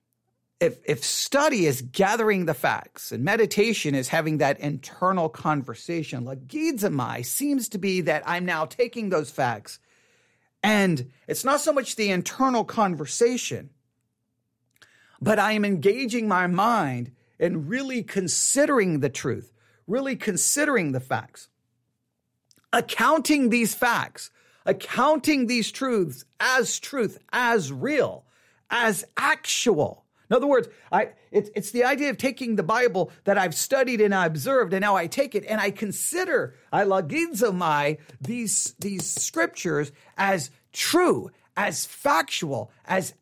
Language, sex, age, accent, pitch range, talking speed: English, male, 40-59, American, 160-250 Hz, 130 wpm